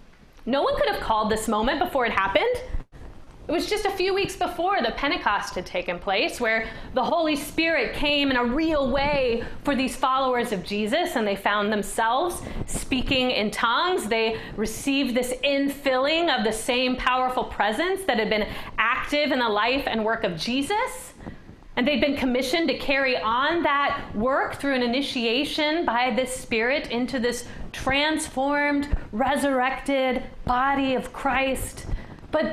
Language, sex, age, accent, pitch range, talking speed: English, female, 30-49, American, 235-335 Hz, 160 wpm